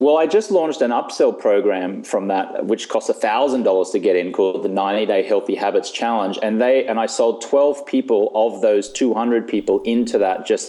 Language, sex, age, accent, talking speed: English, male, 30-49, Australian, 190 wpm